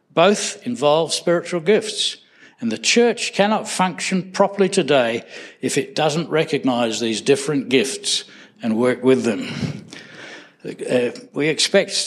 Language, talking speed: English, 125 wpm